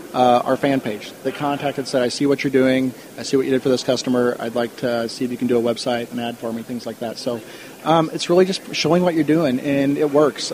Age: 30-49